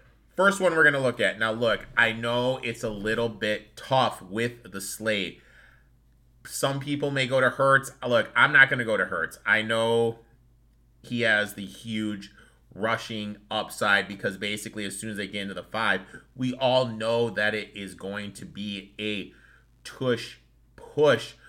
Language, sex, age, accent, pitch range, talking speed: English, male, 30-49, American, 100-125 Hz, 175 wpm